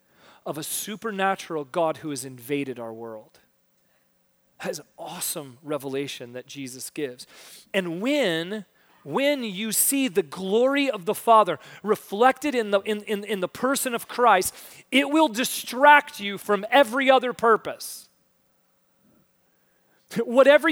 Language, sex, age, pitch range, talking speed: English, male, 30-49, 145-215 Hz, 130 wpm